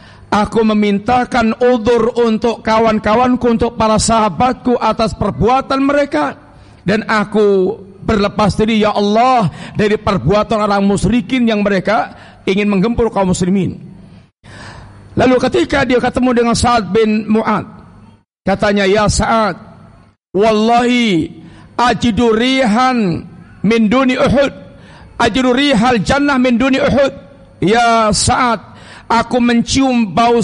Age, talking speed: 50-69, 100 wpm